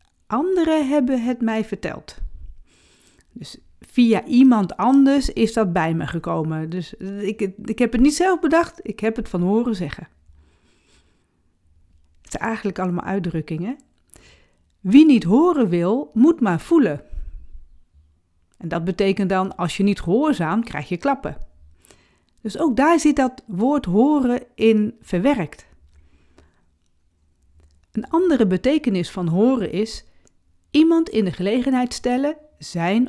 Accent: Dutch